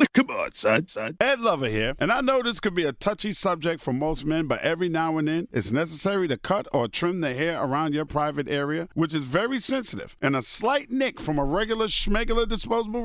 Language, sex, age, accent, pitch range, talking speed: English, male, 50-69, American, 155-225 Hz, 220 wpm